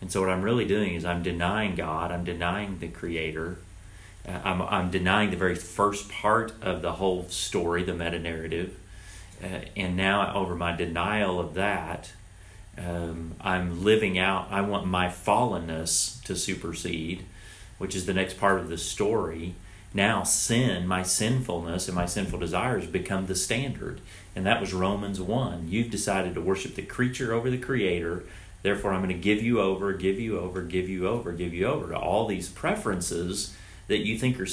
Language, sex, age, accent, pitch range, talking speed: English, male, 40-59, American, 90-105 Hz, 180 wpm